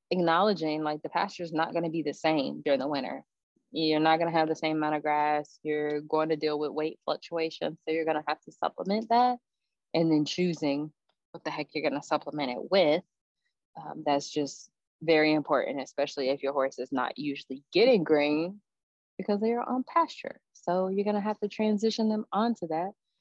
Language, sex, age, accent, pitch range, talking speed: English, female, 20-39, American, 150-195 Hz, 205 wpm